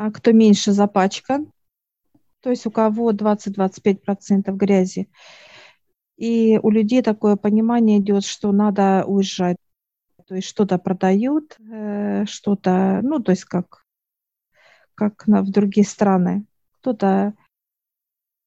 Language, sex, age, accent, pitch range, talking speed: Russian, female, 50-69, native, 190-210 Hz, 105 wpm